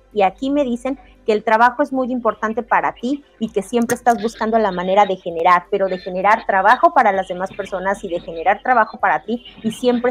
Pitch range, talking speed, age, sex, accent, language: 200-255 Hz, 220 wpm, 30-49, female, Mexican, Spanish